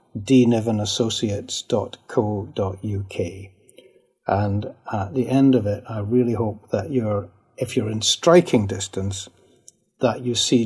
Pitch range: 105-130 Hz